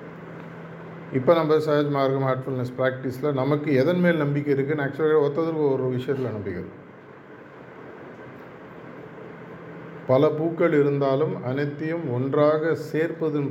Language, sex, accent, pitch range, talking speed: Tamil, male, native, 125-150 Hz, 90 wpm